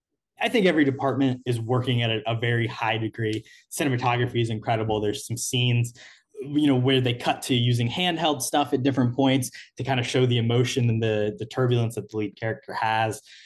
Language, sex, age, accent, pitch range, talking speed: English, male, 20-39, American, 110-140 Hz, 200 wpm